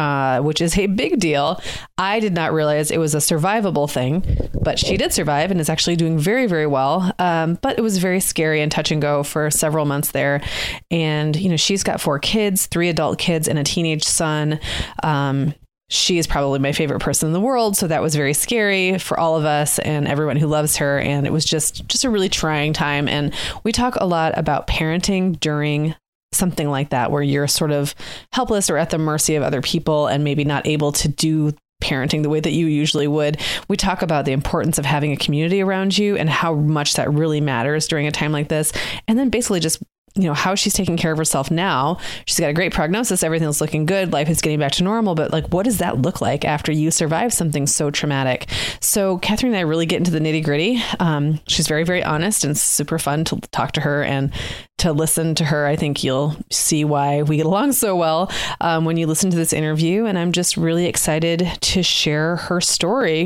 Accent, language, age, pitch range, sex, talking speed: American, English, 20-39, 150-175 Hz, female, 225 wpm